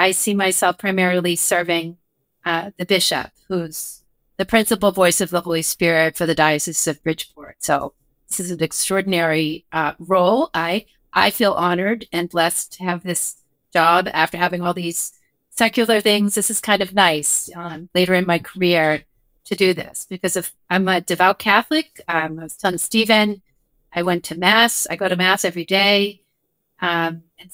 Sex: female